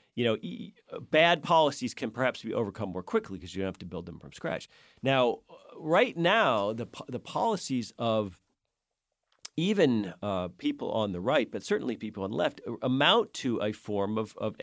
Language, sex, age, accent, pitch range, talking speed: English, male, 40-59, American, 95-120 Hz, 180 wpm